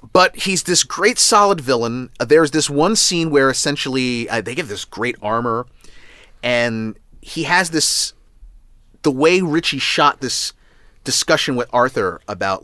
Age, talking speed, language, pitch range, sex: 30-49, 145 wpm, English, 115-170 Hz, male